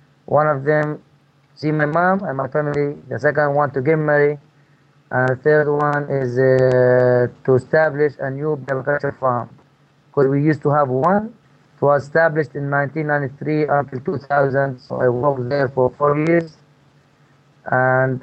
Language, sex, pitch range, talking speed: English, male, 130-150 Hz, 160 wpm